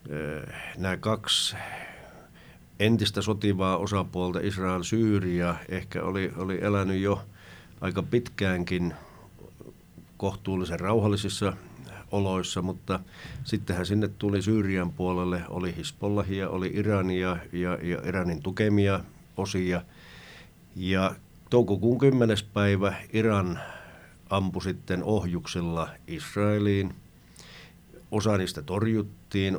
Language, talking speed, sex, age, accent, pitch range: Finnish, 90 wpm, male, 50-69, native, 90-100 Hz